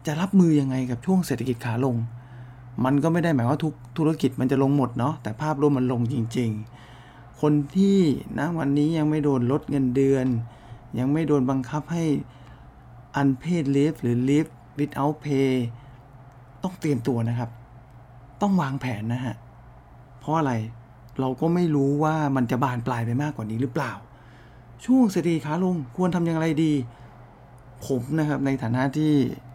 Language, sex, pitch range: English, male, 120-150 Hz